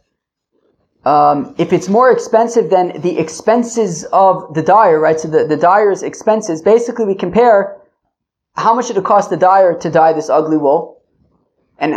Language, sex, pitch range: English, male, 165-225 Hz